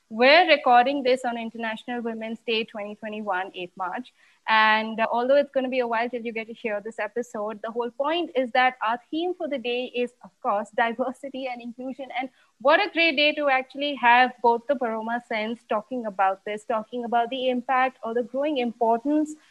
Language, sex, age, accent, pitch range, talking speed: English, female, 20-39, Indian, 230-265 Hz, 200 wpm